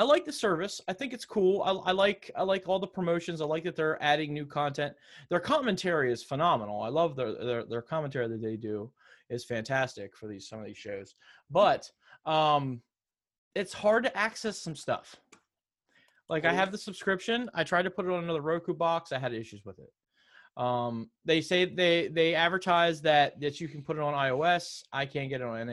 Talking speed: 210 wpm